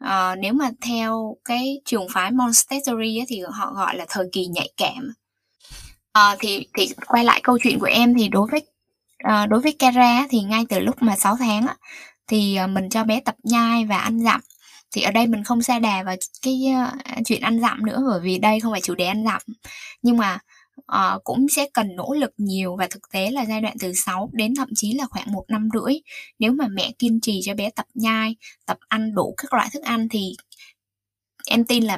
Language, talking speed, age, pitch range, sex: Vietnamese, 220 wpm, 10-29, 205-255 Hz, female